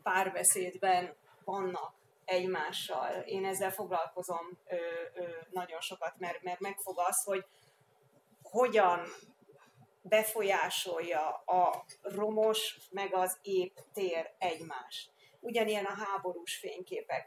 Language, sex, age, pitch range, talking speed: Hungarian, female, 30-49, 180-200 Hz, 95 wpm